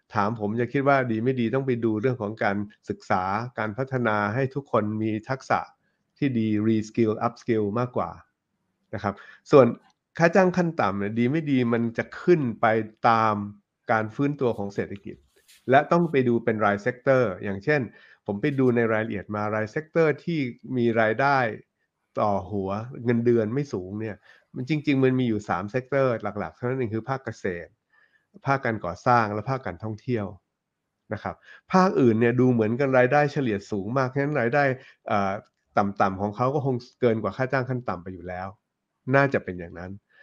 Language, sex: Thai, male